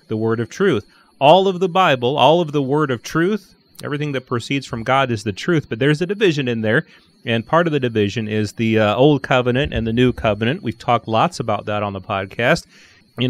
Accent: American